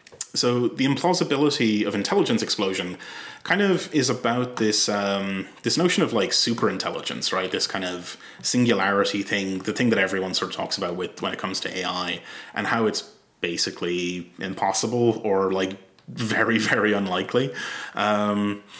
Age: 30-49